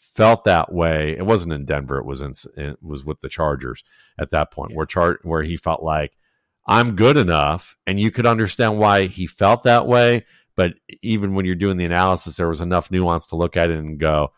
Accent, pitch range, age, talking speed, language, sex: American, 85-105 Hz, 50-69, 220 wpm, English, male